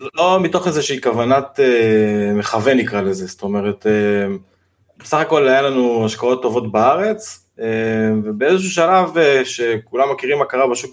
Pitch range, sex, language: 110-155 Hz, male, Hebrew